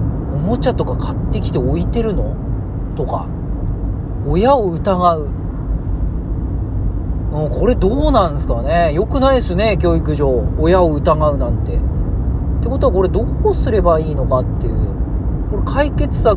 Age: 40-59